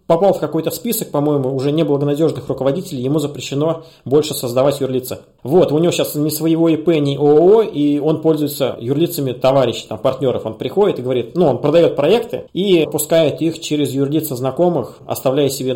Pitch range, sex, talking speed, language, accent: 130-165 Hz, male, 170 wpm, Russian, native